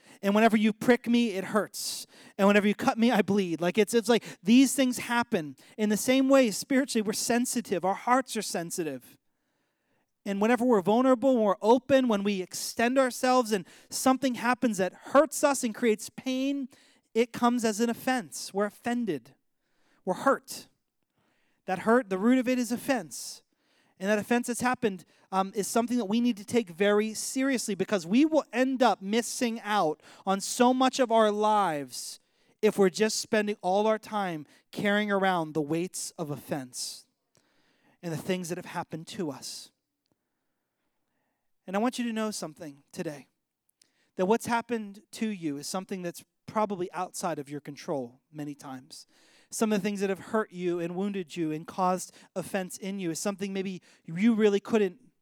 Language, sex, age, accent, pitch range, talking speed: English, male, 30-49, American, 185-240 Hz, 175 wpm